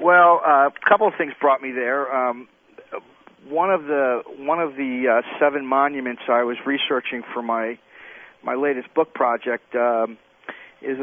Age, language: 40-59, English